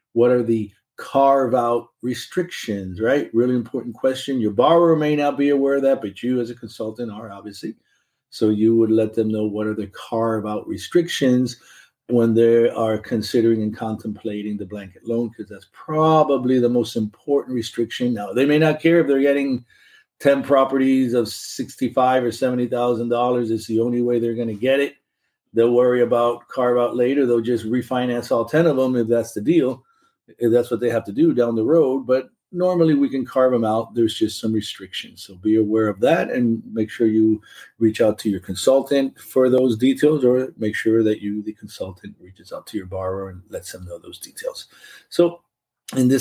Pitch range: 110-135 Hz